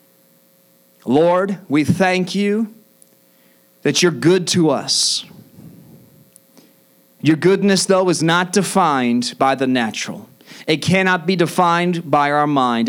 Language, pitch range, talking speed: English, 110-175 Hz, 115 wpm